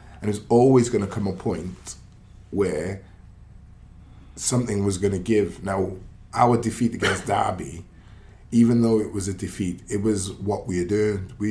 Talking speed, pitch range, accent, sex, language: 165 wpm, 95-115 Hz, British, male, English